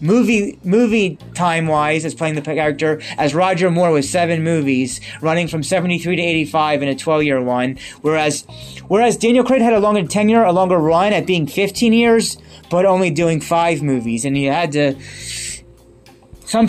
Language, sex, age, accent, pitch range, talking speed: English, male, 20-39, American, 135-180 Hz, 170 wpm